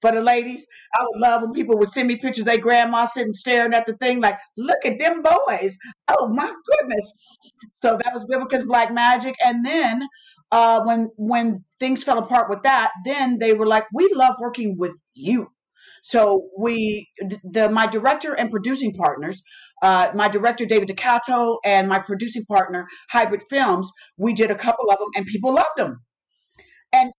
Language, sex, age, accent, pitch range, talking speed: English, female, 50-69, American, 210-260 Hz, 180 wpm